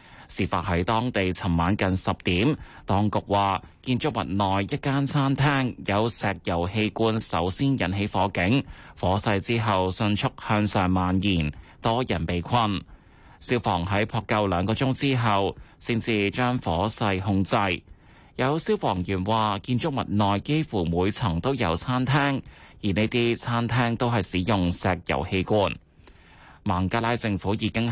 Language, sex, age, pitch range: Chinese, male, 20-39, 90-115 Hz